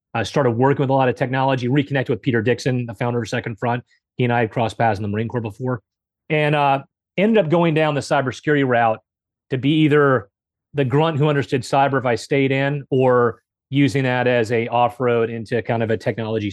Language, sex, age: English, male, 30-49